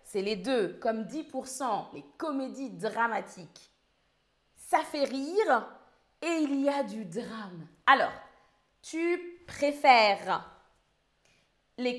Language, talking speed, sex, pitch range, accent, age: French, 105 wpm, female, 210-300 Hz, French, 30-49